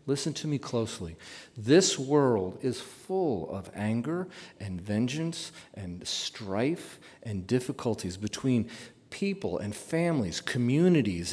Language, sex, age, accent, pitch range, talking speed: English, male, 40-59, American, 110-165 Hz, 110 wpm